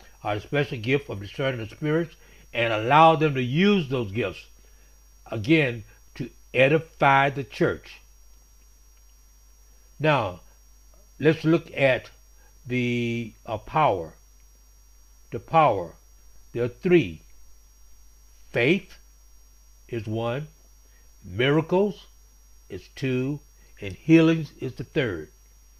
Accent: American